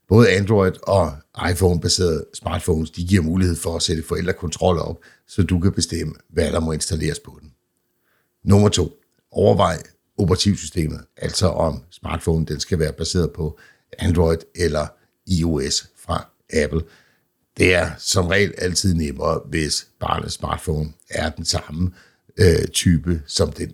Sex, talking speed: male, 140 wpm